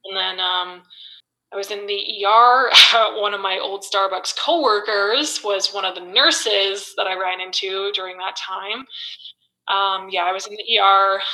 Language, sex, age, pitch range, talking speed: English, female, 20-39, 190-220 Hz, 175 wpm